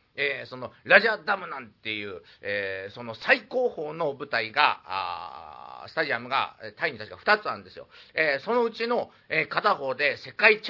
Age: 40-59